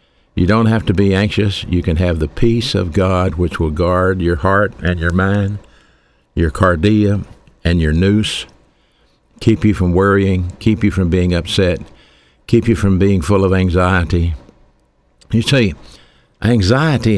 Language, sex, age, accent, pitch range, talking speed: English, male, 60-79, American, 85-105 Hz, 155 wpm